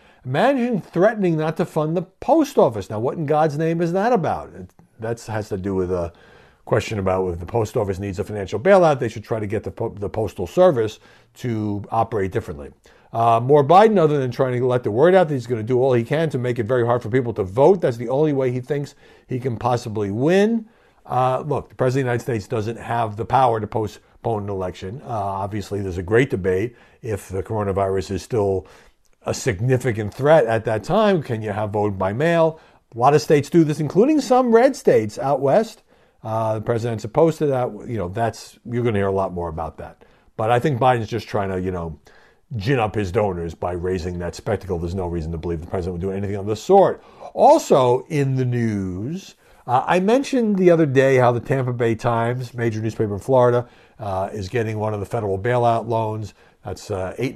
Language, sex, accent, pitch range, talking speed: English, male, American, 100-140 Hz, 220 wpm